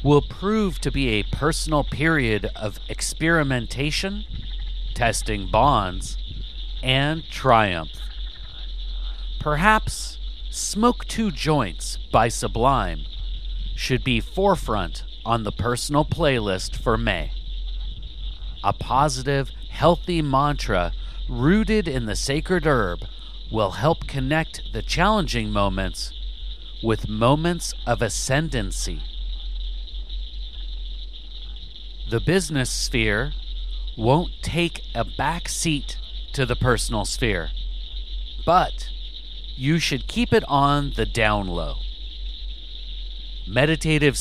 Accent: American